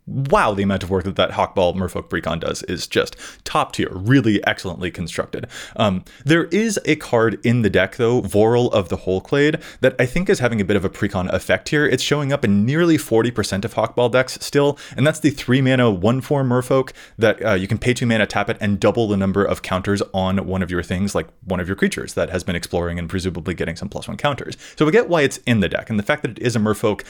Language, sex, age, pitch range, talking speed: English, male, 20-39, 95-130 Hz, 250 wpm